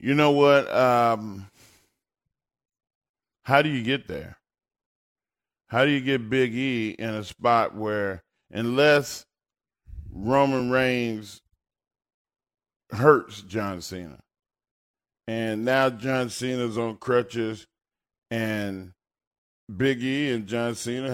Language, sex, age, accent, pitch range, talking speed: English, male, 40-59, American, 100-130 Hz, 105 wpm